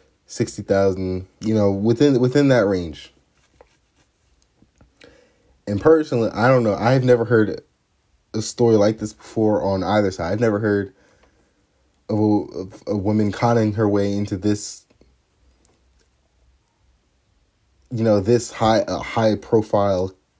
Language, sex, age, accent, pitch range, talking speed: English, male, 30-49, American, 95-110 Hz, 130 wpm